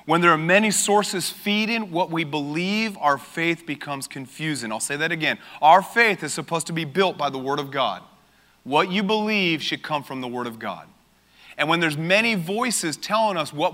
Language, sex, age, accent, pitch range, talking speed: English, male, 30-49, American, 155-190 Hz, 205 wpm